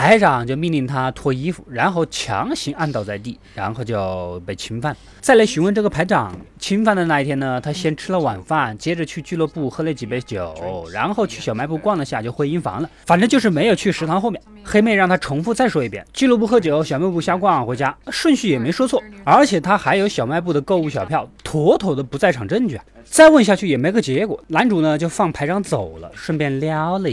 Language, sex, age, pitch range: Chinese, male, 20-39, 135-205 Hz